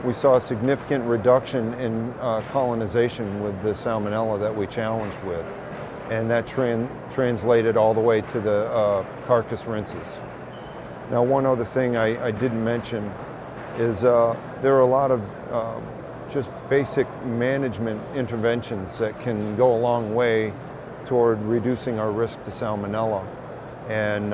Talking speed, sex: 150 wpm, male